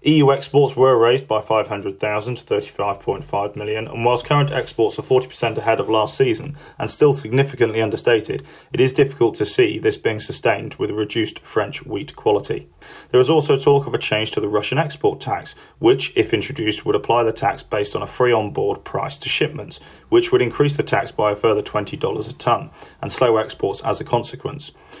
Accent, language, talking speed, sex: British, English, 190 wpm, male